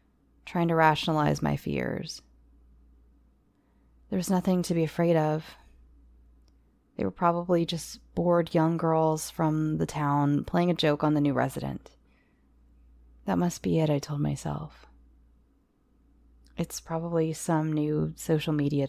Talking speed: 135 wpm